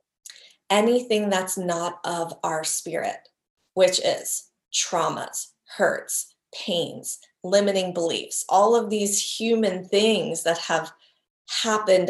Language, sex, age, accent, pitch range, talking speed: English, female, 30-49, American, 170-210 Hz, 105 wpm